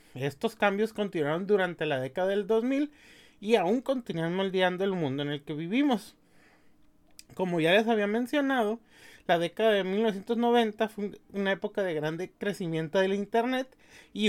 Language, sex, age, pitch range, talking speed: Spanish, male, 30-49, 160-210 Hz, 150 wpm